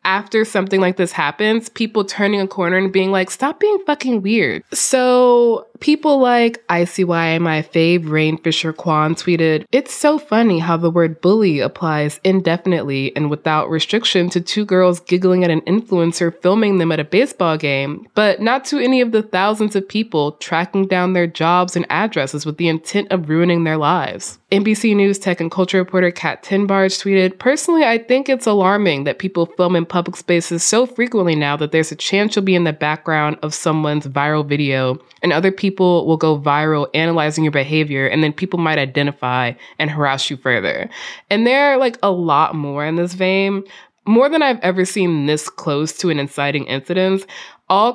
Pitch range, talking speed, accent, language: 155-205 Hz, 185 wpm, American, English